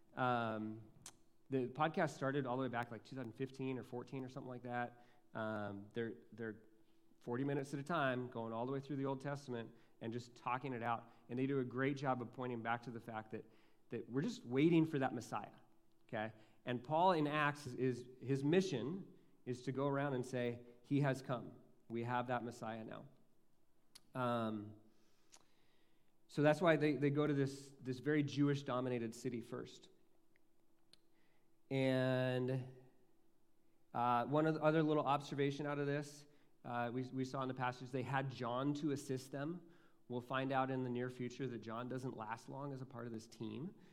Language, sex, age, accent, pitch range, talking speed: English, male, 30-49, American, 120-140 Hz, 185 wpm